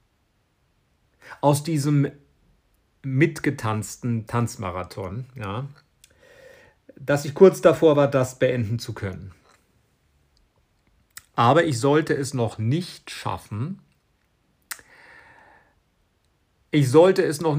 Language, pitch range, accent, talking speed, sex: German, 115-145 Hz, German, 80 wpm, male